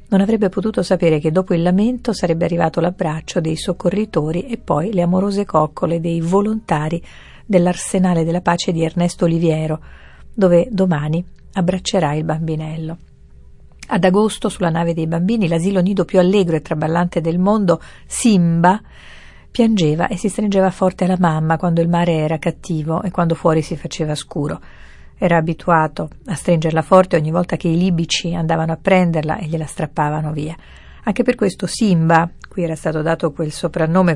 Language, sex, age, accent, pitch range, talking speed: Italian, female, 50-69, native, 160-185 Hz, 160 wpm